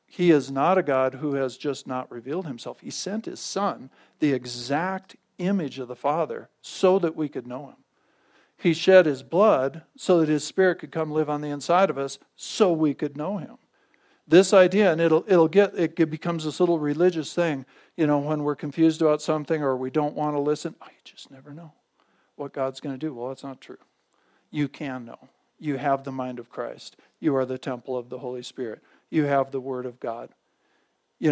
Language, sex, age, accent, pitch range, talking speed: English, male, 50-69, American, 130-165 Hz, 215 wpm